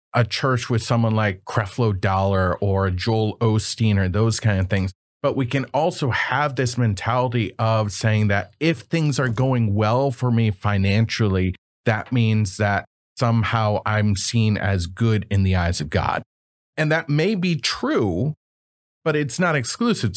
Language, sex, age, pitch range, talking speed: English, male, 30-49, 105-140 Hz, 165 wpm